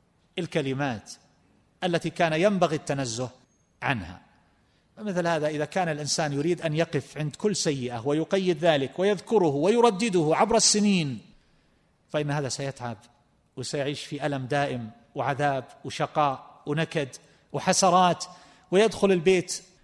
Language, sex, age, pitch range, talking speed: Arabic, male, 40-59, 140-185 Hz, 110 wpm